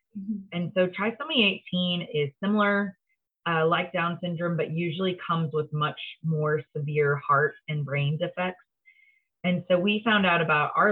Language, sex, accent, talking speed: English, female, American, 155 wpm